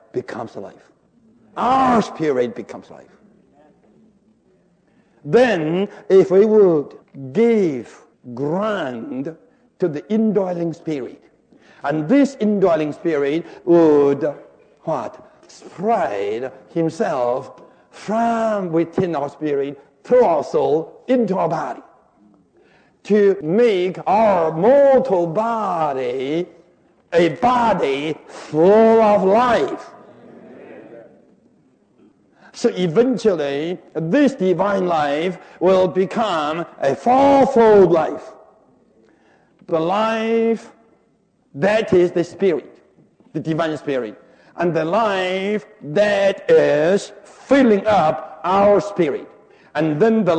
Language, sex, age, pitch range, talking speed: English, male, 60-79, 160-220 Hz, 90 wpm